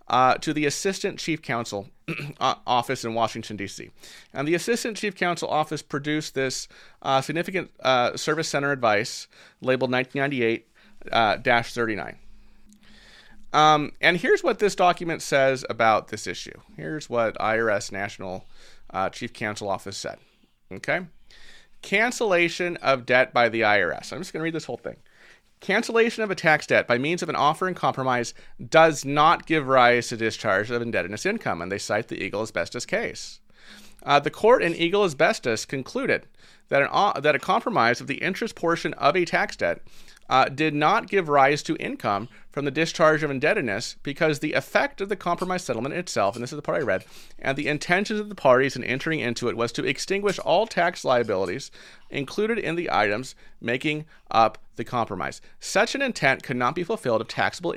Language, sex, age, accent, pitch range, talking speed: English, male, 30-49, American, 125-175 Hz, 175 wpm